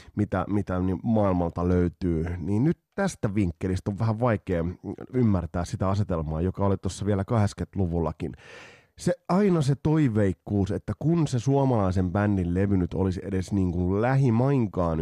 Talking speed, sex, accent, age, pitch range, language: 140 wpm, male, native, 30-49, 90-120 Hz, Finnish